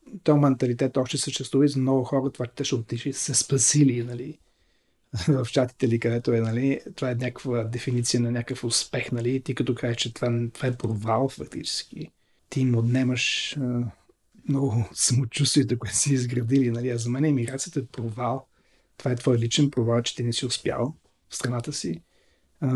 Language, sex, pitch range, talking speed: Bulgarian, male, 120-135 Hz, 180 wpm